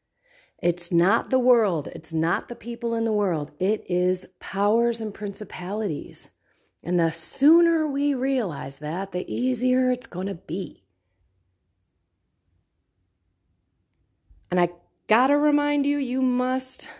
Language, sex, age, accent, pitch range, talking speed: English, female, 30-49, American, 140-230 Hz, 125 wpm